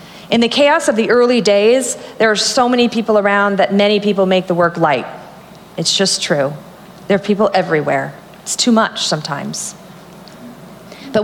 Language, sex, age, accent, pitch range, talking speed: English, female, 40-59, American, 185-225 Hz, 170 wpm